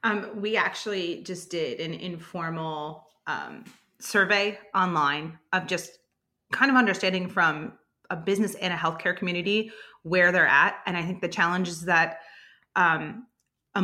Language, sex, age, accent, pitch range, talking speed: English, female, 30-49, American, 170-200 Hz, 145 wpm